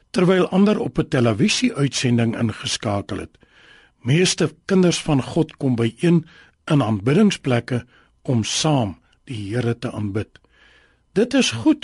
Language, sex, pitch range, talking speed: English, male, 130-185 Hz, 130 wpm